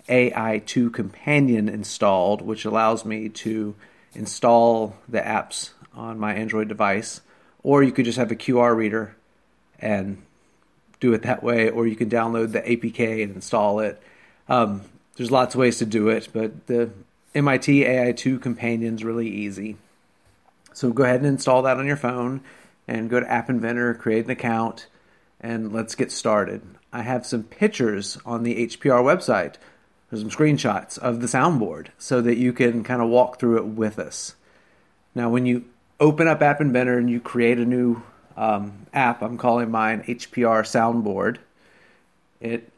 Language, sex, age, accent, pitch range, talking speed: English, male, 40-59, American, 110-125 Hz, 165 wpm